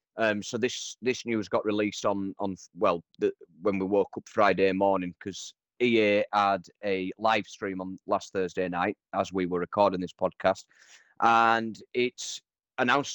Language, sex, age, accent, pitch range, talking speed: English, male, 30-49, British, 95-120 Hz, 165 wpm